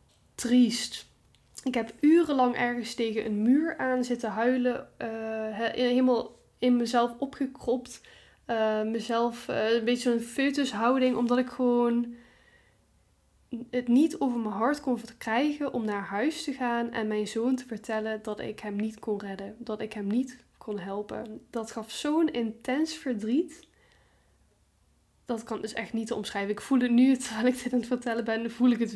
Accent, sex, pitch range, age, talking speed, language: Dutch, female, 215-250 Hz, 10-29, 170 wpm, Dutch